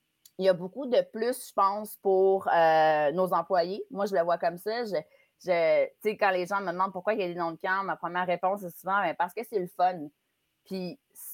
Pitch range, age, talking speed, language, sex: 175-220 Hz, 30-49, 235 wpm, French, female